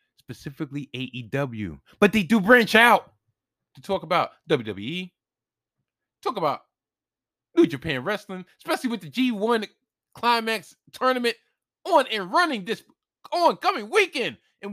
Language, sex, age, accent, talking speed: English, male, 20-39, American, 120 wpm